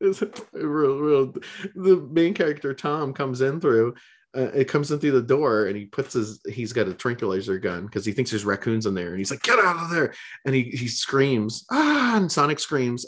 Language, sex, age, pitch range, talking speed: English, male, 30-49, 110-155 Hz, 205 wpm